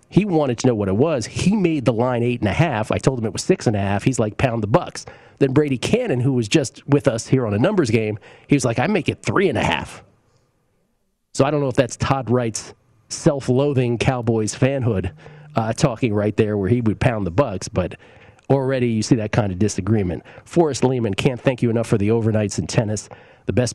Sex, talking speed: male, 240 wpm